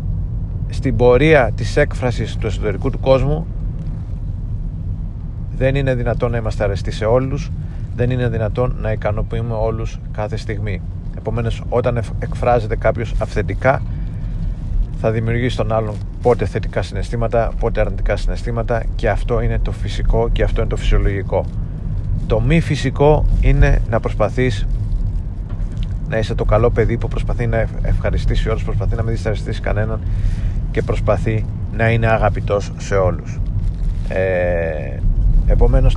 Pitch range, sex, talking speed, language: 100-120 Hz, male, 135 wpm, Greek